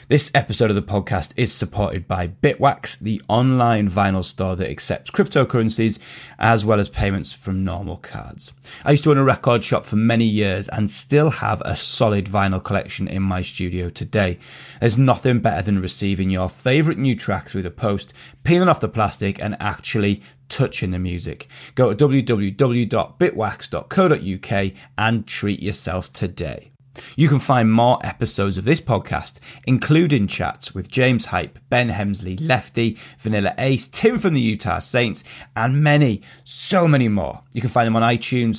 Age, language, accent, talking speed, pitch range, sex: 30-49, English, British, 165 wpm, 100-130 Hz, male